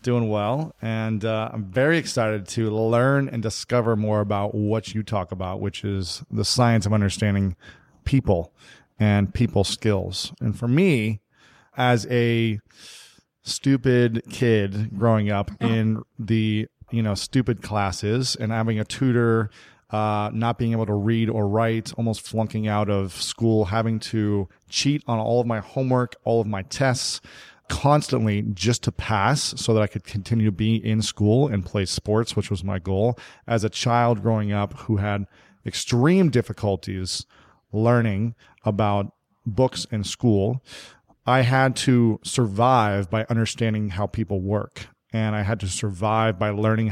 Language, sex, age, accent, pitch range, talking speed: English, male, 30-49, American, 105-120 Hz, 155 wpm